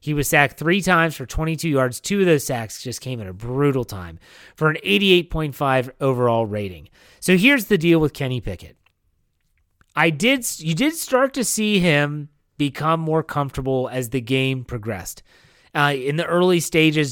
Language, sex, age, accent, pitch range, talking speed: English, male, 30-49, American, 130-180 Hz, 175 wpm